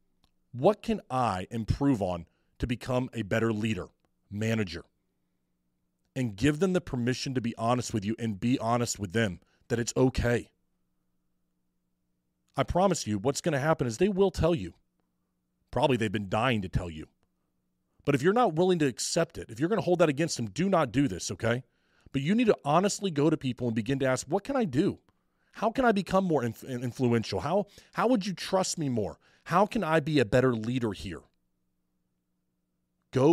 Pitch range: 95-155 Hz